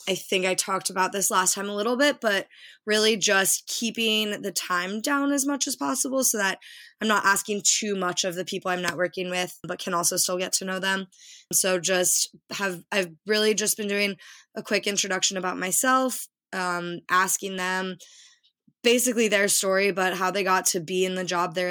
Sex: female